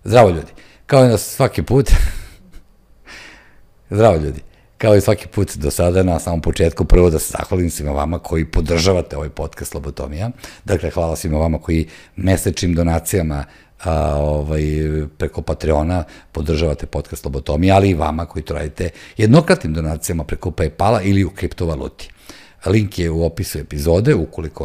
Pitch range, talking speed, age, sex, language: 75-95 Hz, 150 wpm, 50-69, male, English